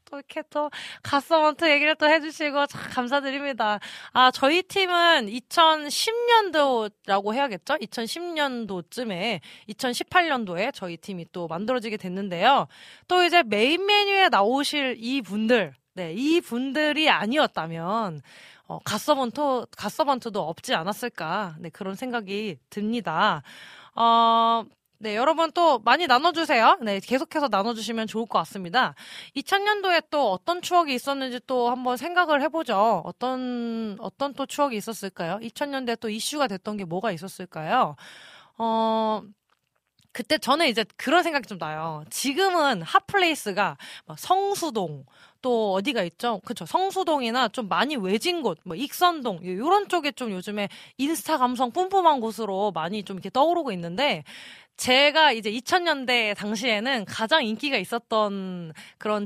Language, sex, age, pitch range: Korean, female, 20-39, 205-295 Hz